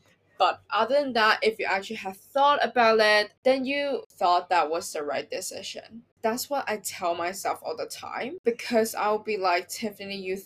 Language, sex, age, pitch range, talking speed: English, female, 10-29, 185-245 Hz, 190 wpm